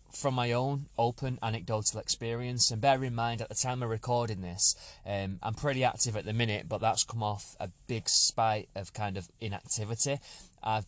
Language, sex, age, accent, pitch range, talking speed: English, male, 20-39, British, 105-125 Hz, 195 wpm